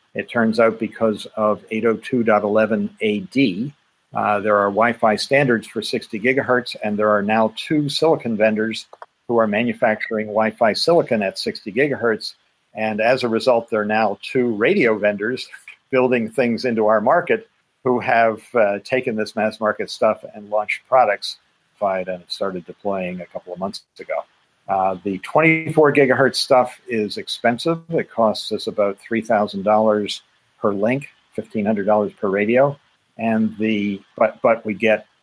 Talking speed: 150 wpm